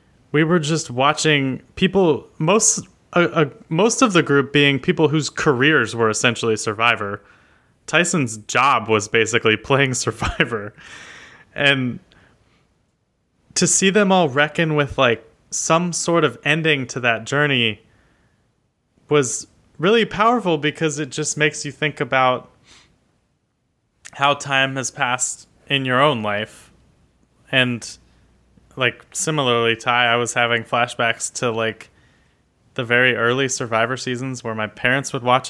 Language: English